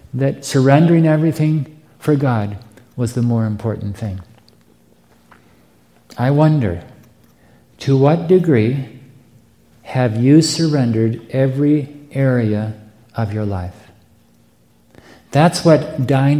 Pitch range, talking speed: 120-150 Hz, 95 wpm